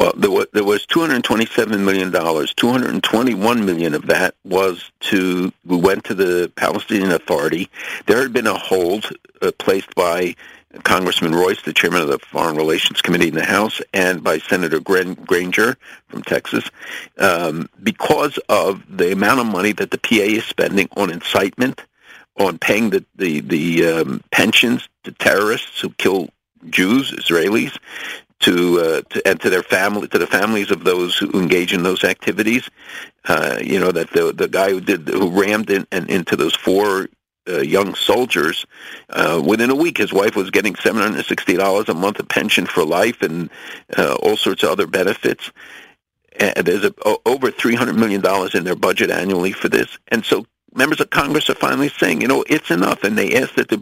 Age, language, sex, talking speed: 60-79, English, male, 185 wpm